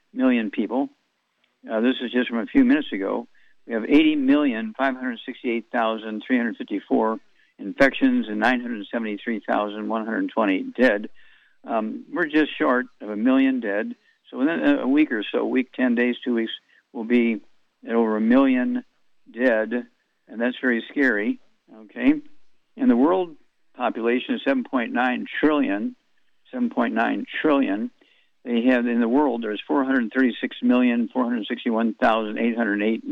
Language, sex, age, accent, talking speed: English, male, 60-79, American, 120 wpm